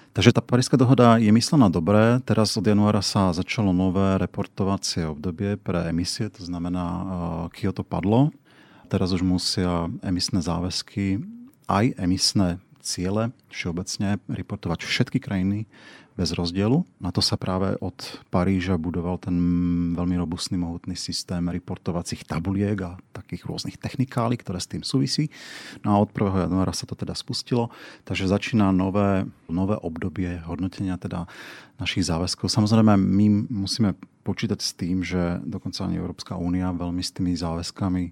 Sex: male